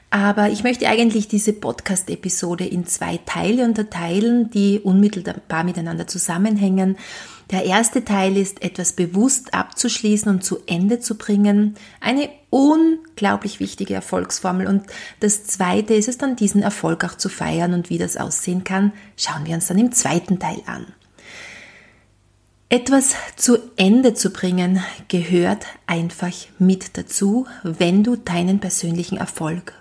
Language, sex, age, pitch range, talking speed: German, female, 30-49, 185-230 Hz, 135 wpm